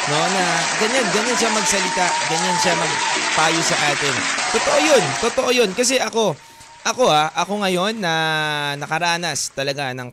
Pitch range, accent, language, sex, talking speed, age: 145-195 Hz, native, Filipino, male, 150 wpm, 20-39